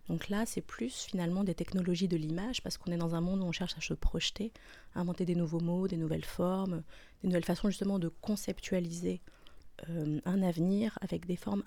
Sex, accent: female, French